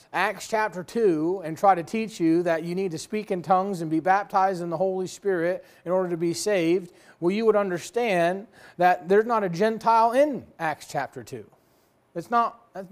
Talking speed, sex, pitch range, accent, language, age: 195 wpm, male, 175-230 Hz, American, English, 30-49